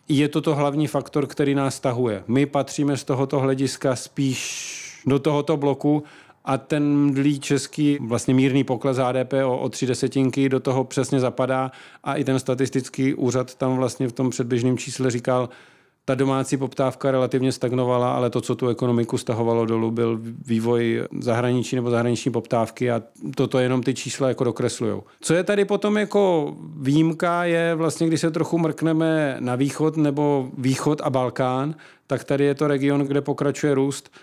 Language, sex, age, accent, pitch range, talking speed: Czech, male, 40-59, native, 125-145 Hz, 170 wpm